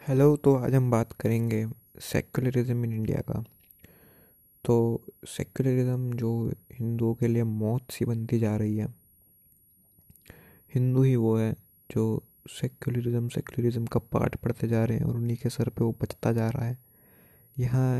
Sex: male